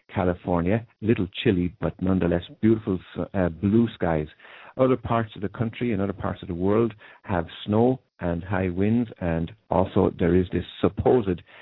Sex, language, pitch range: male, English, 90-110 Hz